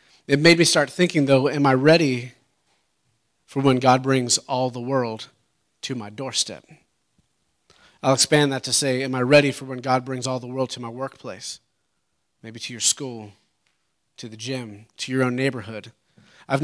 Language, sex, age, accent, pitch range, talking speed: English, male, 30-49, American, 125-145 Hz, 175 wpm